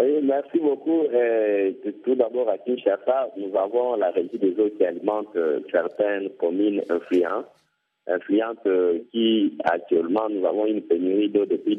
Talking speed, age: 145 wpm, 50-69